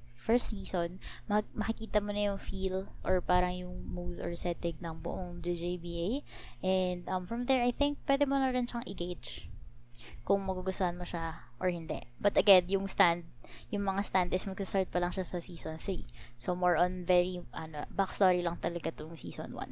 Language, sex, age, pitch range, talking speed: Filipino, female, 20-39, 175-205 Hz, 175 wpm